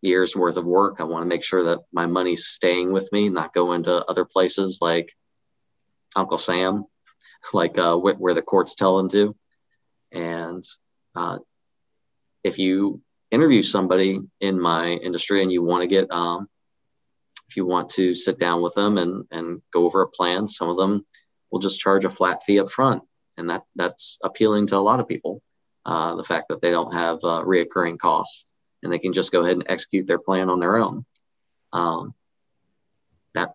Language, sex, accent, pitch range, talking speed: English, male, American, 85-100 Hz, 190 wpm